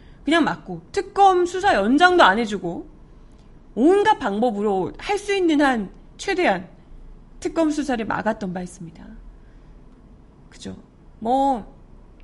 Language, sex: Korean, female